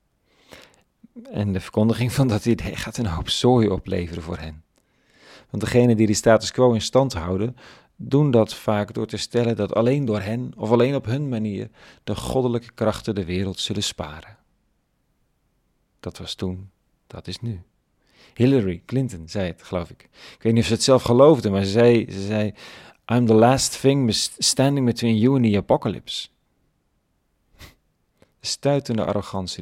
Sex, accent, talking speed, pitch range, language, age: male, Dutch, 160 wpm, 95-120 Hz, Dutch, 40-59